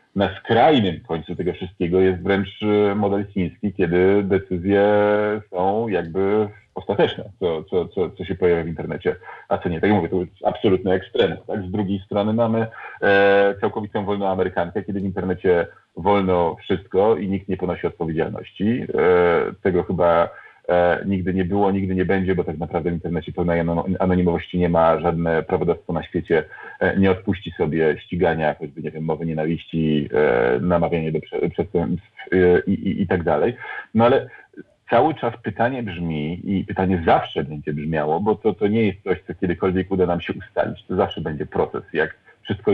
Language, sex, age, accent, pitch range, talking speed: Polish, male, 40-59, native, 85-100 Hz, 170 wpm